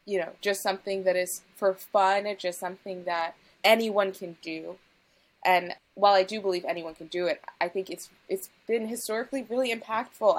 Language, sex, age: English, female, 20-39